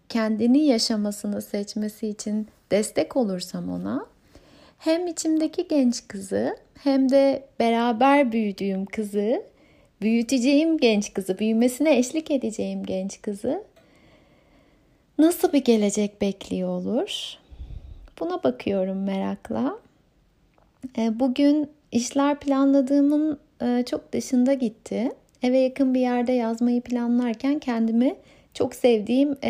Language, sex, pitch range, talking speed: Turkish, female, 220-285 Hz, 95 wpm